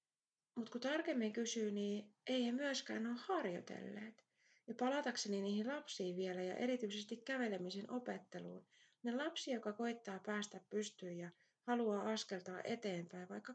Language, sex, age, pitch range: Finnish, female, 30-49, 190-245 Hz